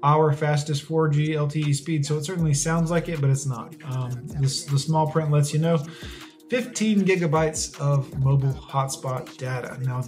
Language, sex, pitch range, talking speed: English, male, 140-160 Hz, 165 wpm